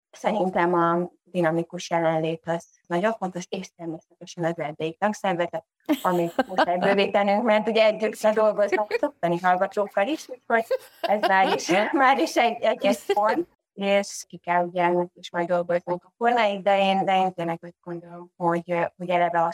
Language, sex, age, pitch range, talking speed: Hungarian, female, 20-39, 170-190 Hz, 70 wpm